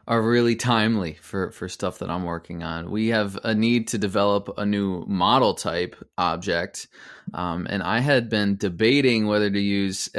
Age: 20-39